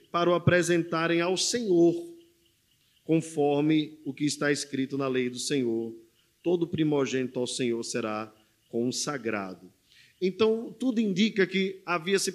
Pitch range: 130-180 Hz